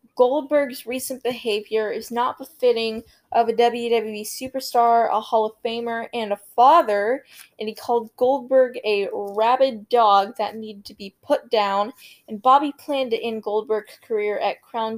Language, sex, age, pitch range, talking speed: English, female, 10-29, 205-245 Hz, 155 wpm